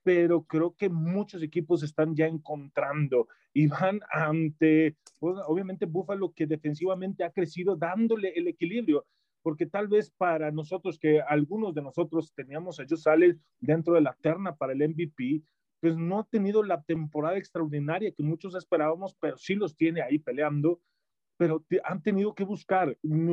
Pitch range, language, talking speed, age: 150-180 Hz, Spanish, 165 wpm, 30-49